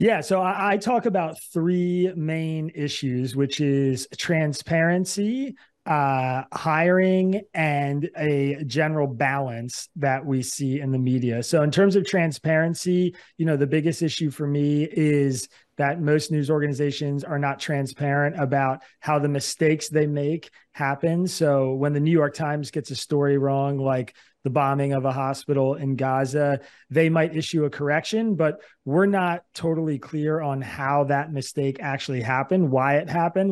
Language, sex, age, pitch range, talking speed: English, male, 30-49, 135-160 Hz, 160 wpm